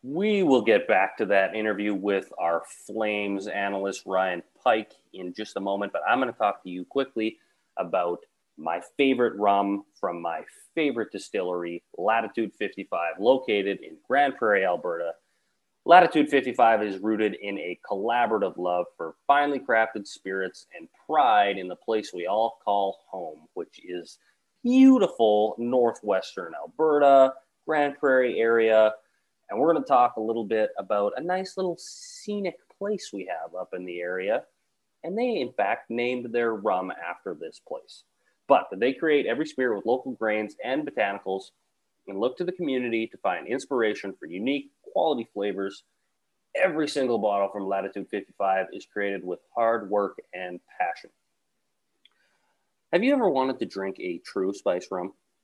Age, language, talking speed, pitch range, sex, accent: 30-49, English, 155 wpm, 100-145 Hz, male, American